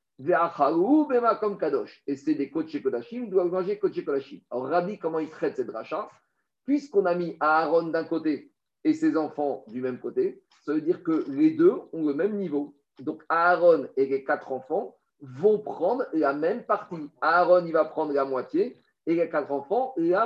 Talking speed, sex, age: 180 wpm, male, 50-69